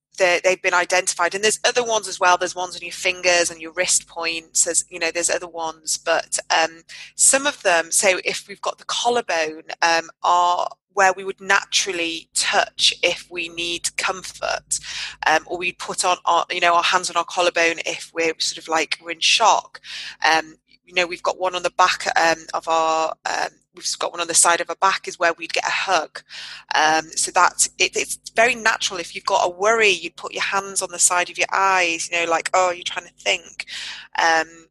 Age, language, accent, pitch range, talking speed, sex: 20-39, English, British, 165-195 Hz, 215 wpm, female